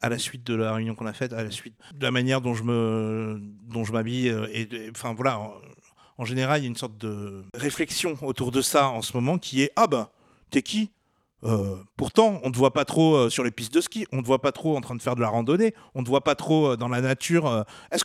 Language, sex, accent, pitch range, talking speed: French, male, French, 115-180 Hz, 300 wpm